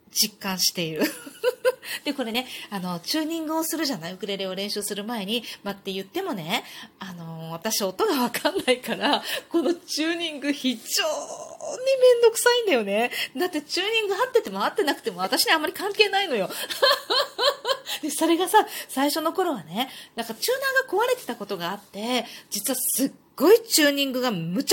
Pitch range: 200-335 Hz